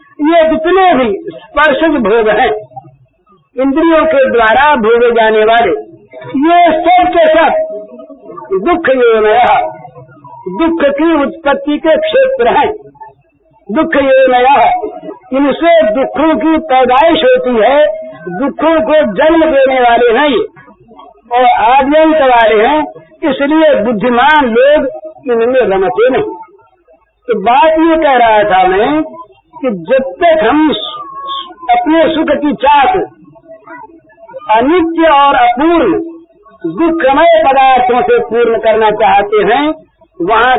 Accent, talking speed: native, 105 wpm